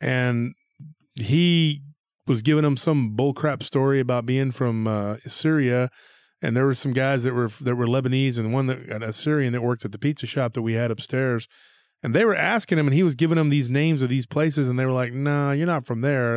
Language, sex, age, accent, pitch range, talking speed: English, male, 30-49, American, 120-150 Hz, 225 wpm